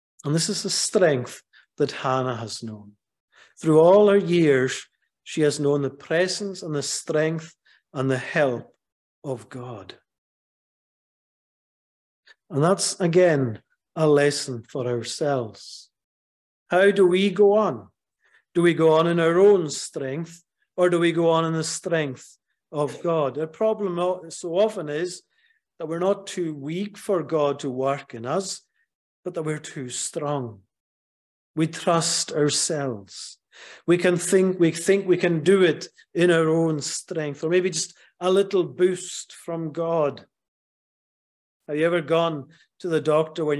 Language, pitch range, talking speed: English, 145-180 Hz, 150 wpm